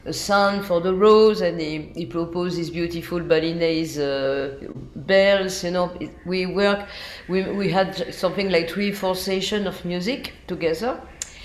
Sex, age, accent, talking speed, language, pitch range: female, 50-69, French, 145 wpm, English, 150-205 Hz